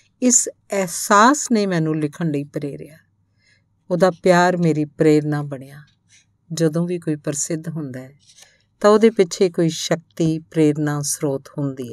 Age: 50-69